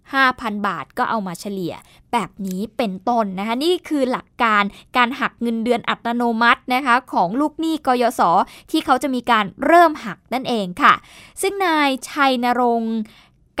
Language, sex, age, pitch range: Thai, female, 10-29, 220-270 Hz